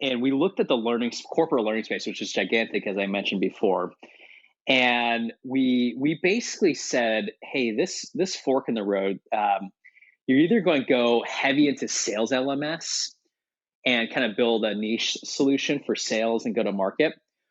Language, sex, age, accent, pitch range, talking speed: English, male, 20-39, American, 110-135 Hz, 175 wpm